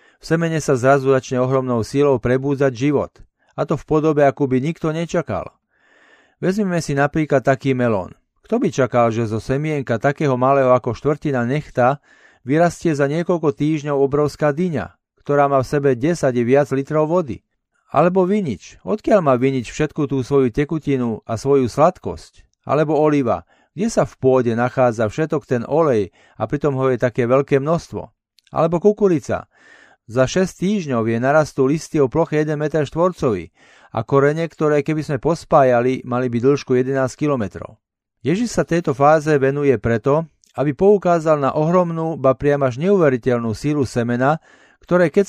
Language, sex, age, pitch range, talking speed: Slovak, male, 40-59, 130-160 Hz, 155 wpm